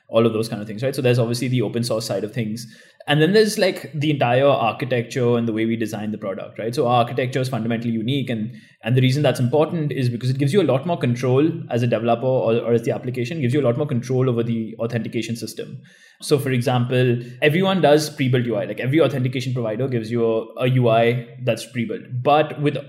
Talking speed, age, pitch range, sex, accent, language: 235 wpm, 20-39, 115-140 Hz, male, Indian, English